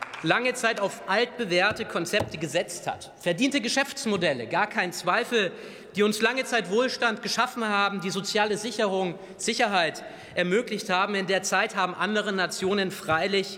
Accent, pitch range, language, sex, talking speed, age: German, 180-220 Hz, German, male, 140 wpm, 30-49